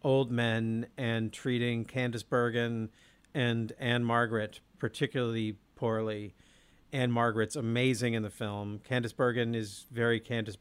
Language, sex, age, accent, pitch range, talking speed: English, male, 50-69, American, 115-135 Hz, 125 wpm